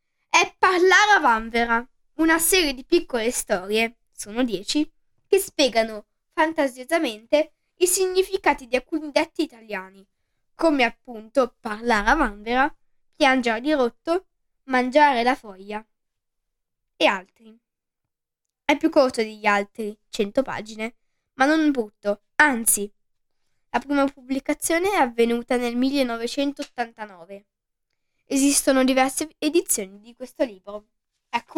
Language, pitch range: Italian, 225-315 Hz